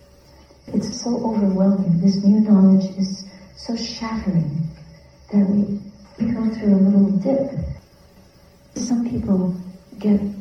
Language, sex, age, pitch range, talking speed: English, female, 50-69, 185-215 Hz, 115 wpm